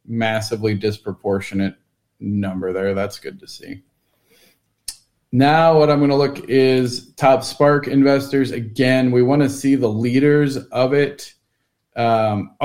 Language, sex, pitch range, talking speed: English, male, 115-145 Hz, 135 wpm